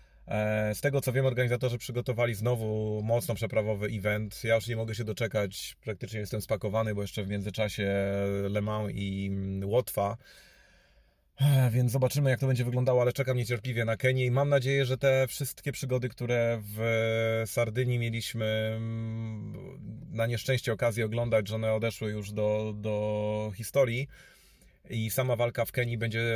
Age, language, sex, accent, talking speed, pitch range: 30-49, Polish, male, native, 150 wpm, 105-130 Hz